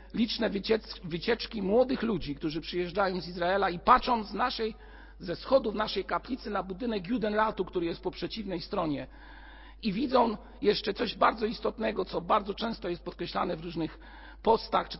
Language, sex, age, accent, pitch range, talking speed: Polish, male, 50-69, native, 170-225 Hz, 155 wpm